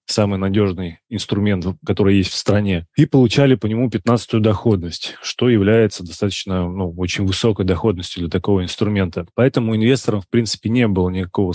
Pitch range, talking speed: 95-115 Hz, 155 wpm